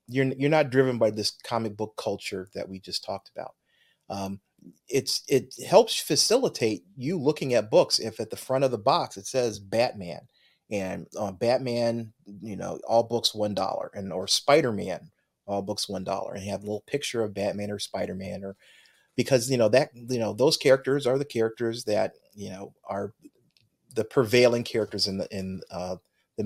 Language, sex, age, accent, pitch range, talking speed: English, male, 30-49, American, 100-125 Hz, 190 wpm